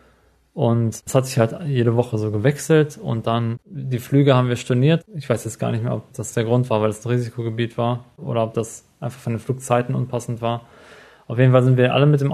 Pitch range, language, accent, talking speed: 120-135 Hz, German, German, 240 wpm